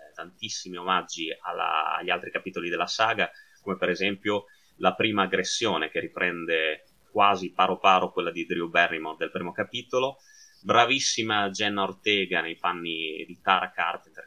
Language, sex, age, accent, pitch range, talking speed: Italian, male, 20-39, native, 90-115 Hz, 140 wpm